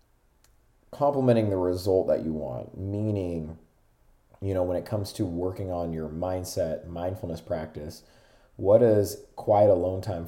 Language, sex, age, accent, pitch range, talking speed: English, male, 30-49, American, 85-105 Hz, 140 wpm